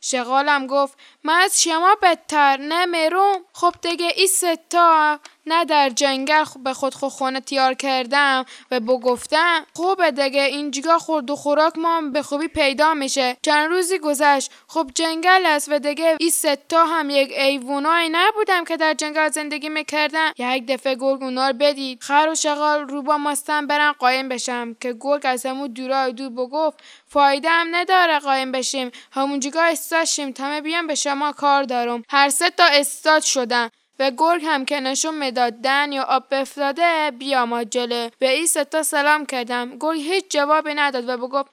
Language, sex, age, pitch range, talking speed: Persian, female, 10-29, 270-330 Hz, 165 wpm